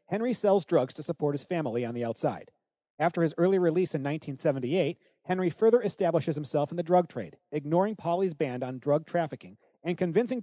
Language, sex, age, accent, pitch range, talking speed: English, male, 40-59, American, 140-180 Hz, 185 wpm